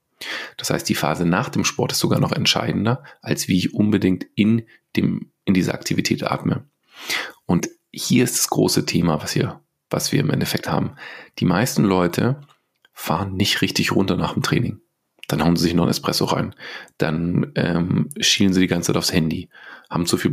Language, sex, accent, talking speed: German, male, German, 190 wpm